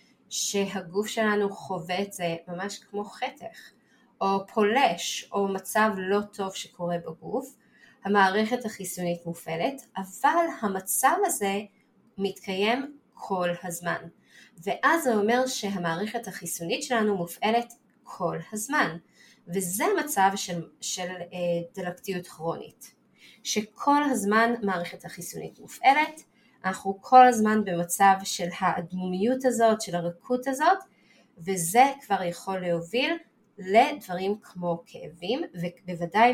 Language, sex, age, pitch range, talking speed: Hebrew, female, 20-39, 180-230 Hz, 105 wpm